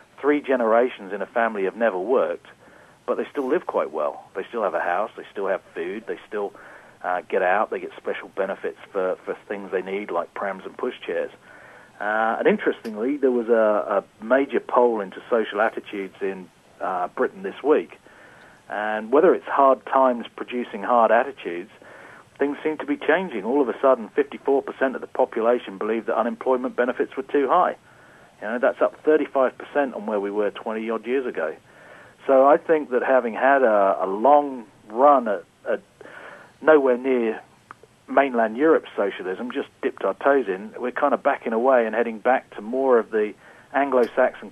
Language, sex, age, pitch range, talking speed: English, male, 40-59, 110-140 Hz, 175 wpm